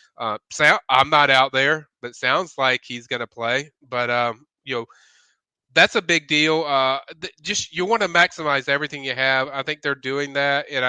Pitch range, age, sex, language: 130-145 Hz, 30-49, male, English